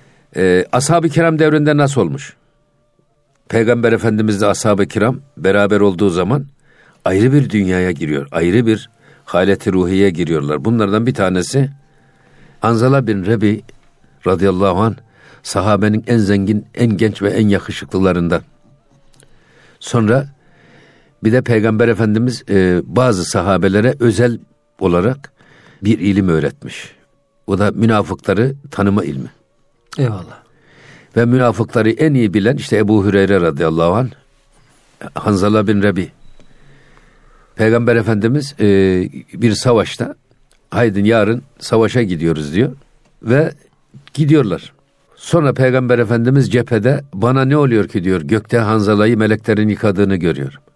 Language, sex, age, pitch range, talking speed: Turkish, male, 60-79, 100-130 Hz, 110 wpm